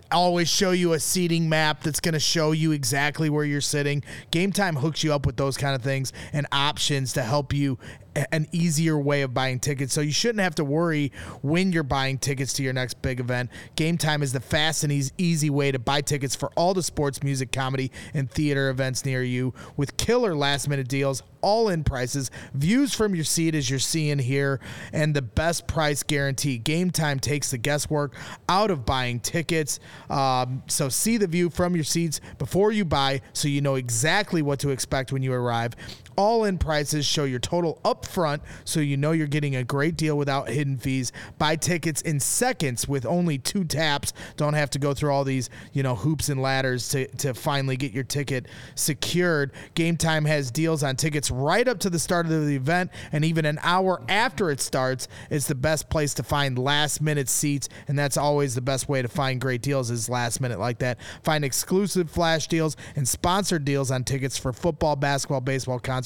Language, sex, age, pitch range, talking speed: English, male, 30-49, 135-160 Hz, 205 wpm